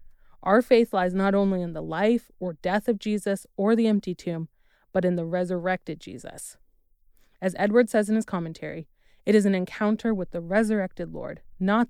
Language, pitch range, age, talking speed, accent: English, 175-215 Hz, 20-39, 180 wpm, American